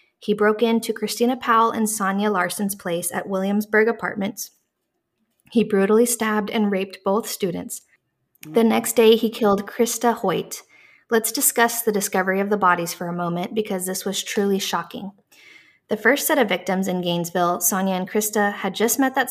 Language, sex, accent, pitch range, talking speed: English, female, American, 185-230 Hz, 170 wpm